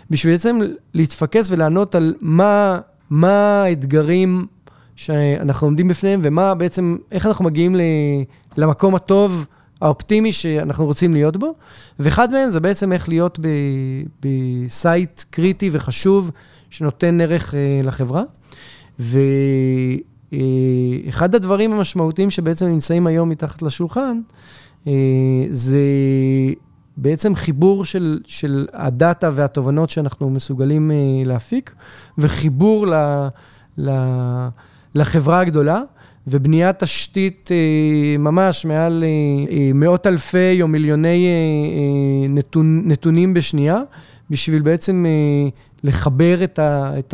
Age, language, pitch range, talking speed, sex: 30-49, Hebrew, 140-175 Hz, 95 wpm, male